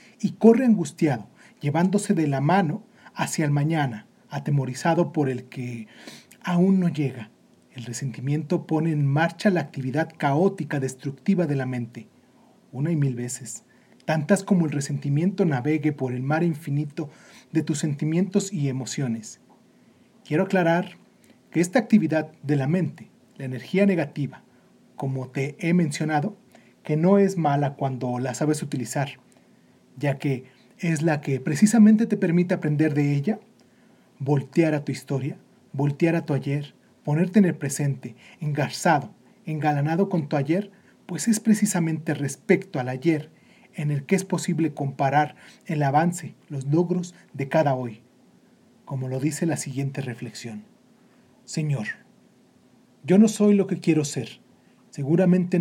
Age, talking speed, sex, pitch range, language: 40-59, 140 wpm, male, 140-175 Hz, Spanish